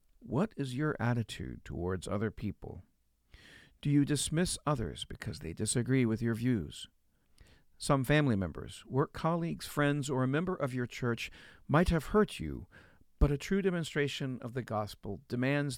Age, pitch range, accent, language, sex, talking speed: 50-69, 105-145 Hz, American, English, male, 155 wpm